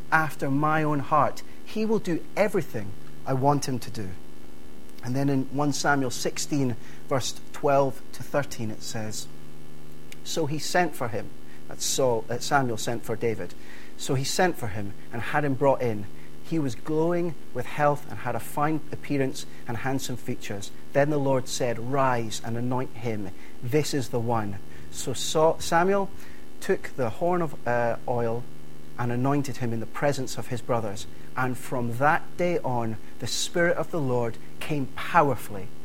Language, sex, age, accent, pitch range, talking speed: English, male, 30-49, British, 115-160 Hz, 165 wpm